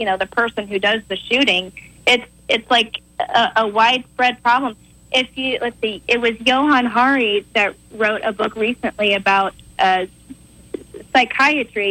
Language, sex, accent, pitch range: English, female, American, 220-265 Hz